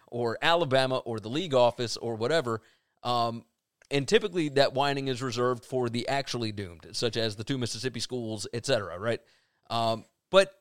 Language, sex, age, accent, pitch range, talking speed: English, male, 30-49, American, 125-195 Hz, 165 wpm